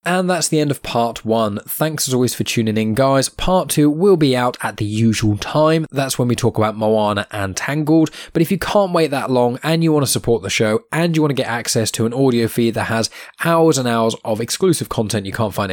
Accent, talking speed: British, 250 wpm